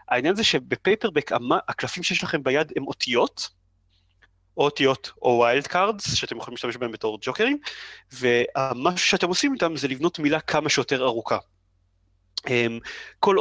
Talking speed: 145 wpm